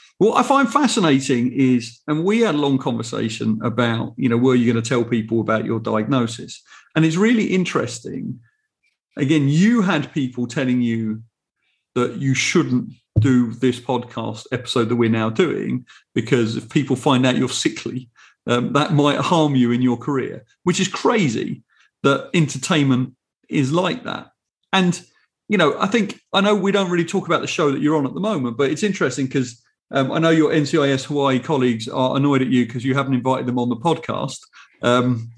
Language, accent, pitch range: English, British, 125-165 Hz